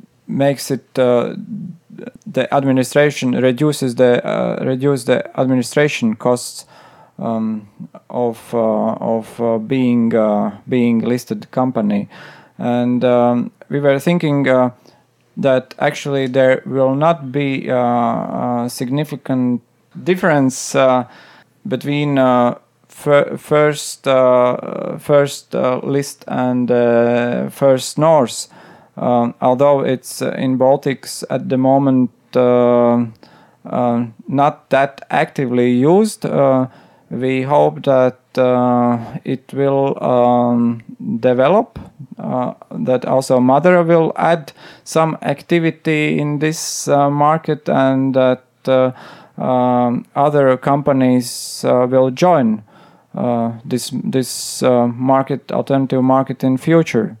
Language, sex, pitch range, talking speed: English, male, 120-145 Hz, 110 wpm